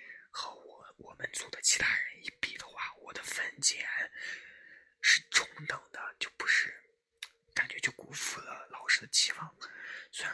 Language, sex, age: Chinese, male, 20-39